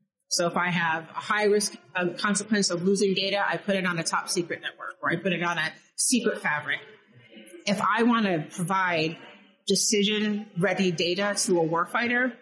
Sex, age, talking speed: female, 30-49, 185 wpm